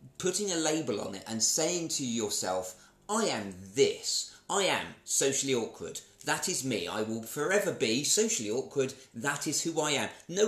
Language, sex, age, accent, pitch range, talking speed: English, male, 30-49, British, 130-165 Hz, 180 wpm